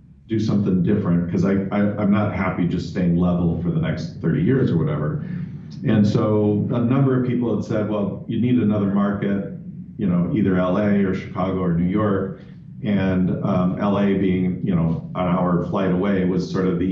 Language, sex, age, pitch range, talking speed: English, male, 40-59, 90-105 Hz, 195 wpm